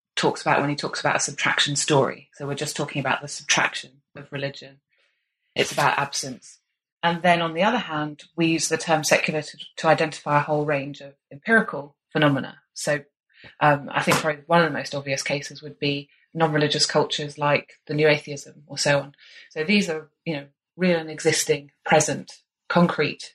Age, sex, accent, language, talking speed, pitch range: 20-39, female, British, English, 190 wpm, 145-170 Hz